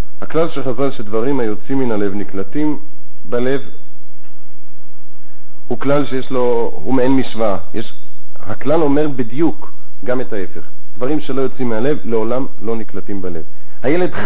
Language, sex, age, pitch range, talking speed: Hebrew, male, 50-69, 105-150 Hz, 135 wpm